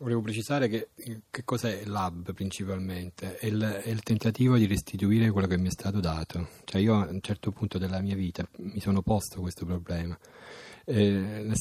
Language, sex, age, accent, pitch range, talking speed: Italian, male, 30-49, native, 90-100 Hz, 180 wpm